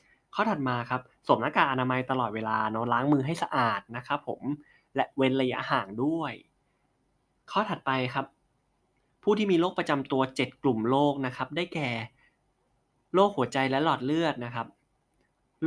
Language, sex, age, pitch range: Thai, male, 20-39, 120-145 Hz